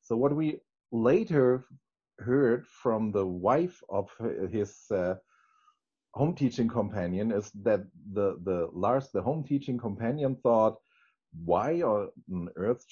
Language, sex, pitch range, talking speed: English, male, 100-135 Hz, 125 wpm